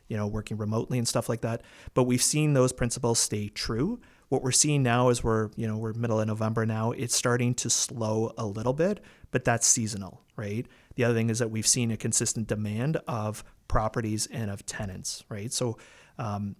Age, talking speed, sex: 30-49, 205 wpm, male